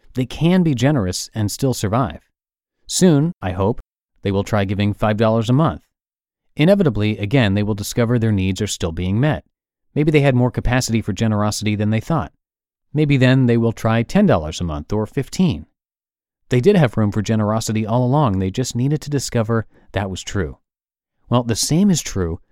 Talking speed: 185 wpm